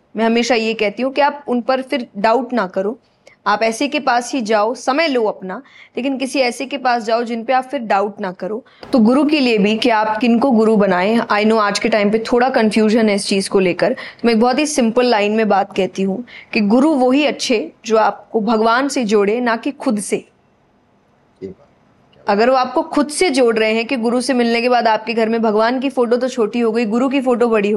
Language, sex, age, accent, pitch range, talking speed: Hindi, female, 20-39, native, 215-260 Hz, 240 wpm